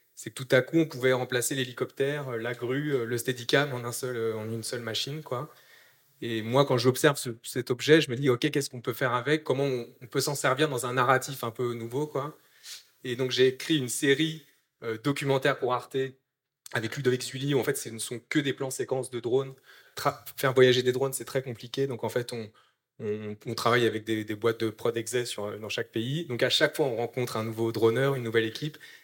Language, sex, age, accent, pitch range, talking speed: French, male, 20-39, French, 115-135 Hz, 225 wpm